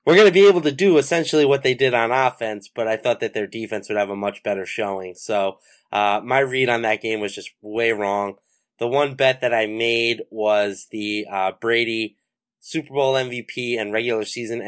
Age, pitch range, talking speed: 20-39, 105-130 Hz, 215 wpm